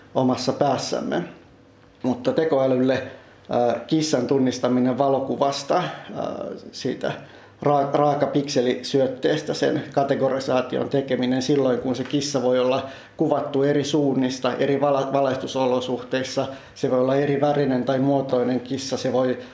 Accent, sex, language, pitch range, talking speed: native, male, Finnish, 125-140 Hz, 110 wpm